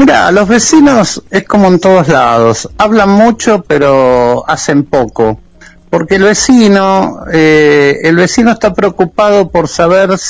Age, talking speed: 60-79, 135 wpm